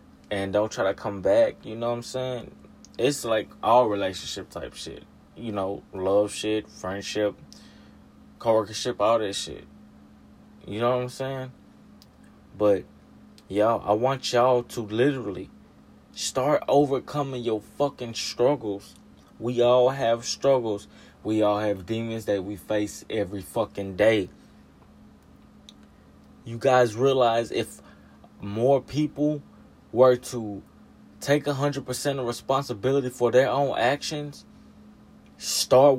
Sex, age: male, 20-39